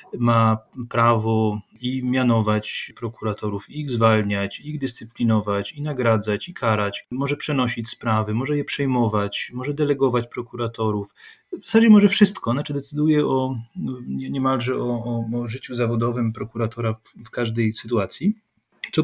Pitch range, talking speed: 110-130 Hz, 130 wpm